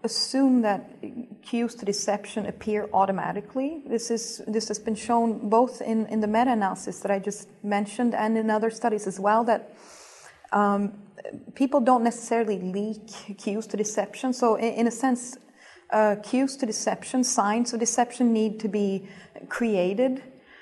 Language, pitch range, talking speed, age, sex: English, 210-250 Hz, 155 wpm, 30-49, female